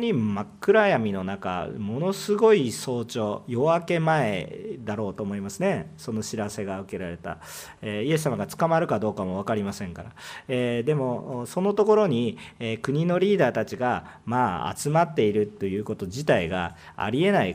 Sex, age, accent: male, 40-59, native